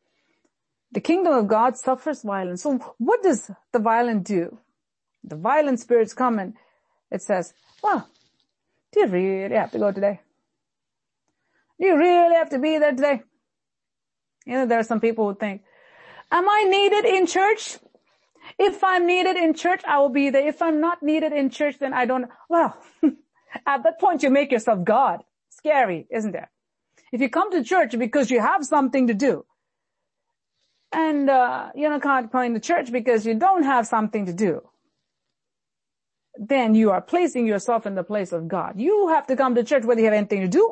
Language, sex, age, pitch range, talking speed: English, female, 40-59, 230-325 Hz, 185 wpm